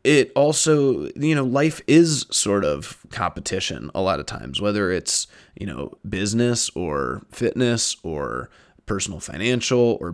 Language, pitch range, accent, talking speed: English, 95-120 Hz, American, 140 wpm